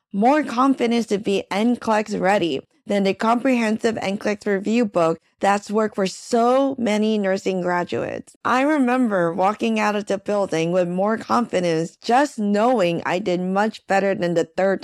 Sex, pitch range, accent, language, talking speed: female, 200-265 Hz, American, English, 155 wpm